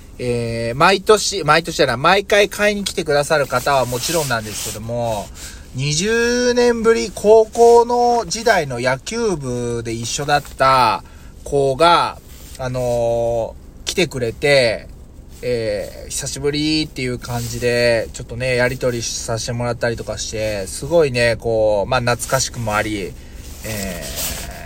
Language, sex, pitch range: Japanese, male, 110-170 Hz